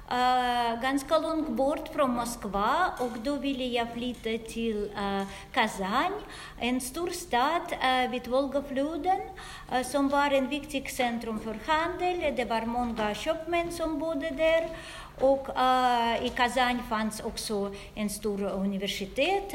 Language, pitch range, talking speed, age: Swedish, 245-310 Hz, 135 wpm, 40-59